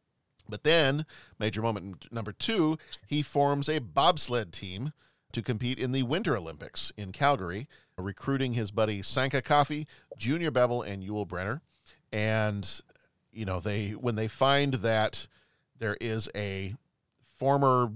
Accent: American